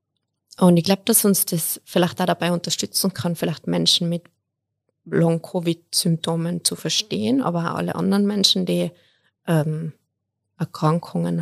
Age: 20-39